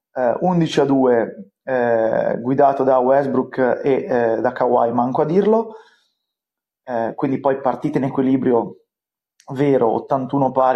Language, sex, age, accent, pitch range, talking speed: English, male, 20-39, Italian, 120-145 Hz, 125 wpm